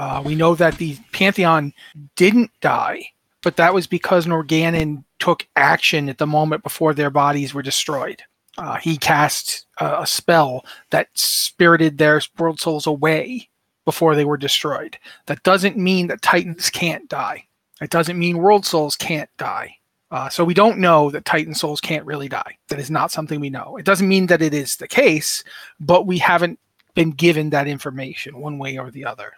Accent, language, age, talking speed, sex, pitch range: American, English, 30-49, 185 wpm, male, 150-185 Hz